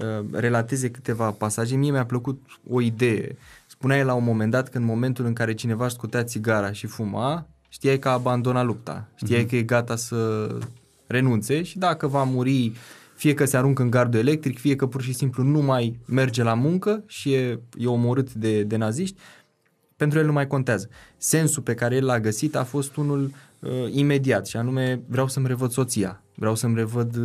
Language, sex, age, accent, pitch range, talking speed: Romanian, male, 20-39, native, 120-145 Hz, 190 wpm